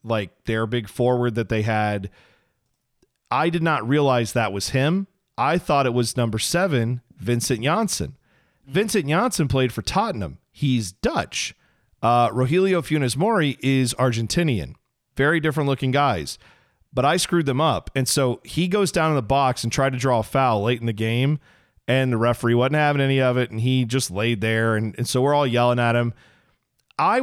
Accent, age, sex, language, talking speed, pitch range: American, 40-59, male, English, 185 wpm, 125-195 Hz